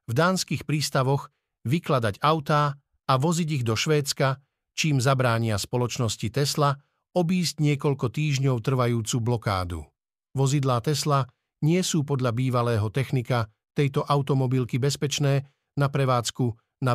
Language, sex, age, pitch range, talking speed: Slovak, male, 50-69, 120-150 Hz, 115 wpm